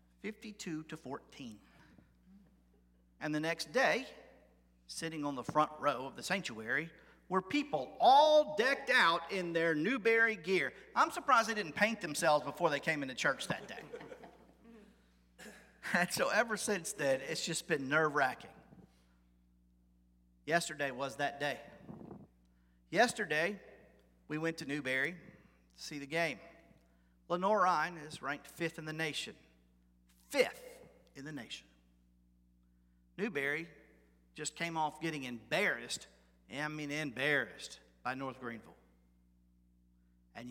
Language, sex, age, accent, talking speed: English, male, 40-59, American, 125 wpm